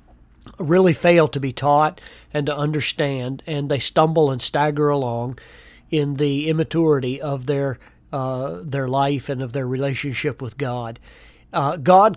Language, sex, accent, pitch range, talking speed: English, male, American, 130-165 Hz, 150 wpm